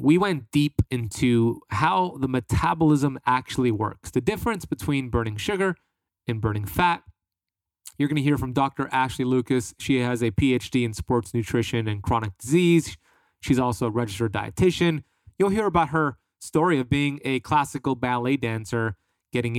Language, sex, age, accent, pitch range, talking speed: English, male, 30-49, American, 115-145 Hz, 160 wpm